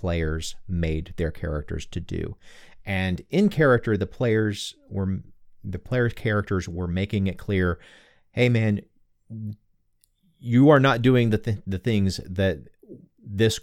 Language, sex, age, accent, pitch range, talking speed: English, male, 30-49, American, 90-105 Hz, 130 wpm